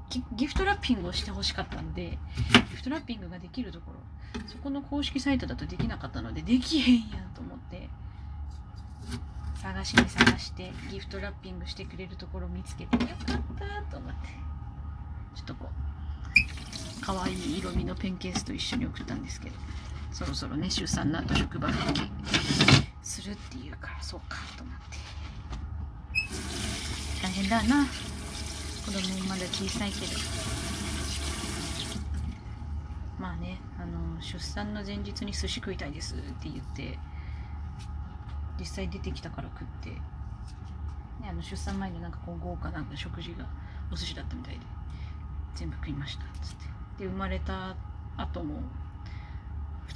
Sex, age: female, 30-49